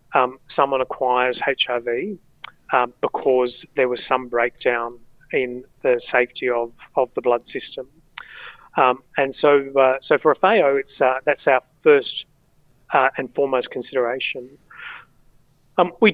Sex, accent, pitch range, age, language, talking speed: male, Australian, 130-160 Hz, 30-49, English, 135 wpm